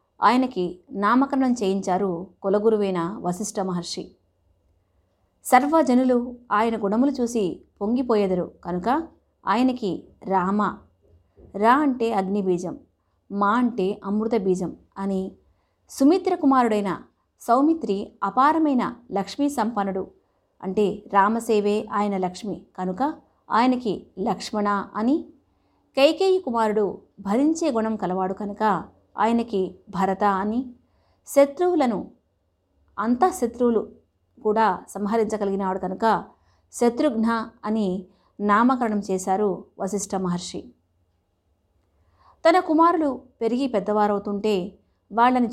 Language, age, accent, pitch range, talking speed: Telugu, 20-39, native, 190-240 Hz, 80 wpm